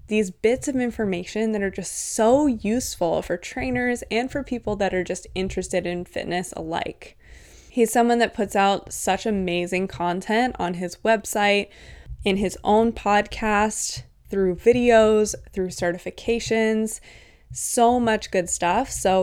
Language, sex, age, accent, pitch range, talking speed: English, female, 20-39, American, 180-230 Hz, 140 wpm